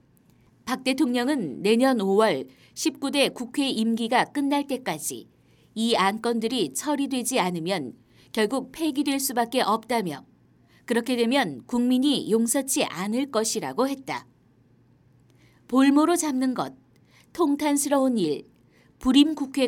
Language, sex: Korean, female